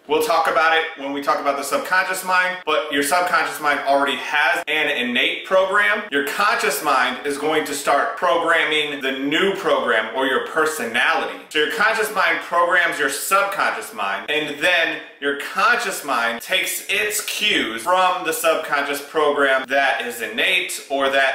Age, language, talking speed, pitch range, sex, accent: 30-49, English, 165 wpm, 145-180 Hz, male, American